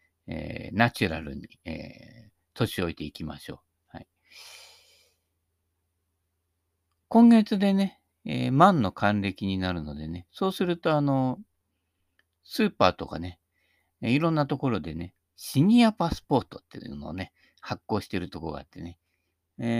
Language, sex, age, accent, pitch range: Japanese, male, 50-69, native, 85-130 Hz